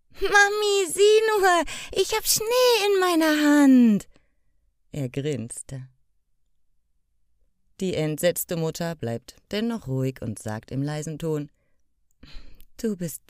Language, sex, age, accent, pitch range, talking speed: German, female, 30-49, German, 130-205 Hz, 110 wpm